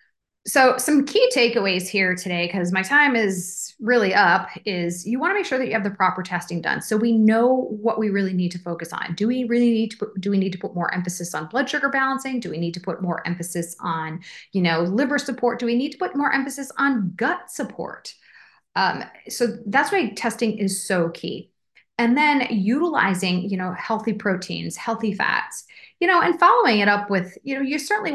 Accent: American